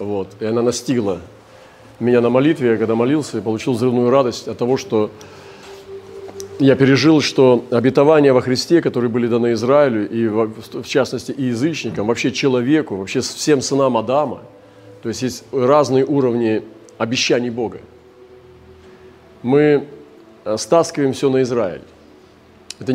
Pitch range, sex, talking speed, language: 115-145 Hz, male, 130 wpm, Russian